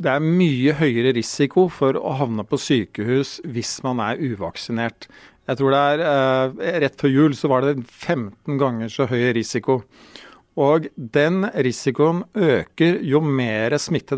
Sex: male